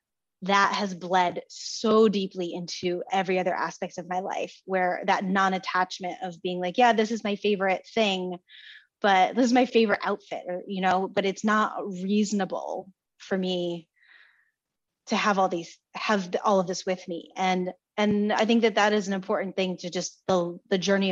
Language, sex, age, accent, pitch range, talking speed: English, female, 20-39, American, 185-215 Hz, 180 wpm